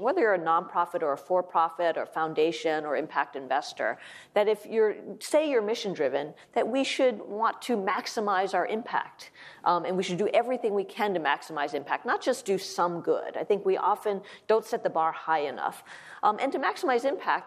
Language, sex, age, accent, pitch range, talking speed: English, female, 40-59, American, 175-230 Hz, 195 wpm